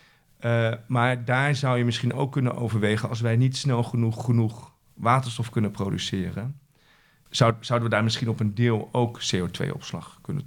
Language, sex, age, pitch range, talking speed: English, male, 40-59, 105-130 Hz, 165 wpm